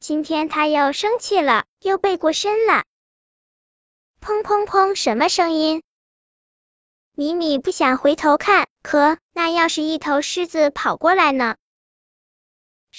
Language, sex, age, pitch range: Chinese, male, 10-29, 290-365 Hz